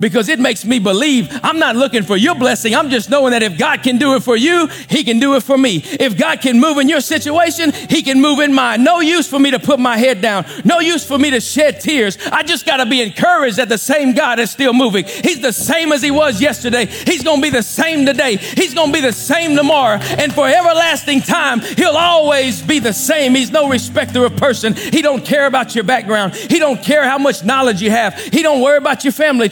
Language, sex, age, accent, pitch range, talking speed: English, male, 40-59, American, 245-300 Hz, 245 wpm